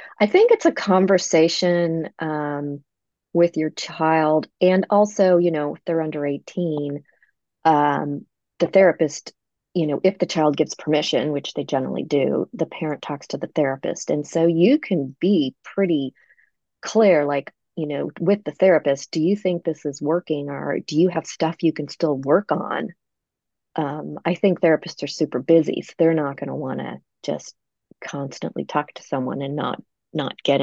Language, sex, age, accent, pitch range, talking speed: English, female, 30-49, American, 150-175 Hz, 175 wpm